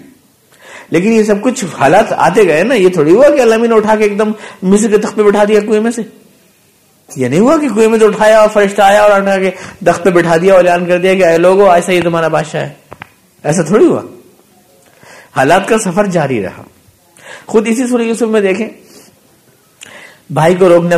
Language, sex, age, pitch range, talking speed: Urdu, male, 50-69, 140-210 Hz, 200 wpm